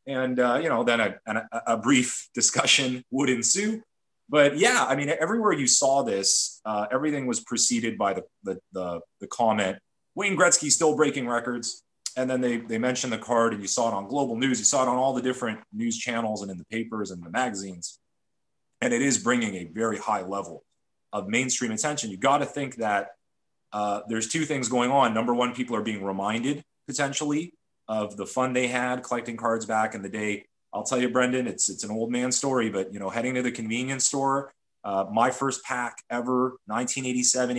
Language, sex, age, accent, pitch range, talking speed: English, male, 30-49, American, 110-130 Hz, 205 wpm